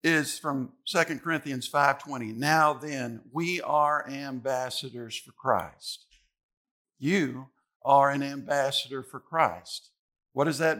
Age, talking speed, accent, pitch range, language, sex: 50-69, 115 wpm, American, 145-210 Hz, English, male